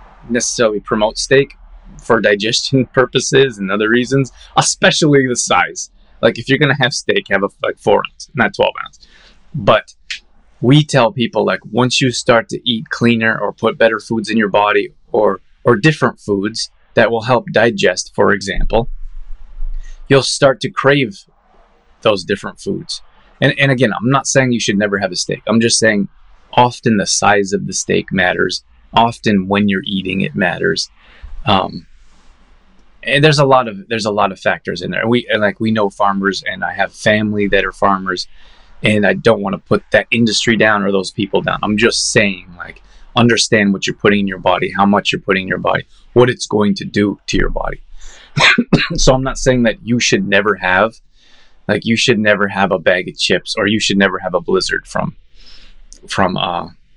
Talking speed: 190 wpm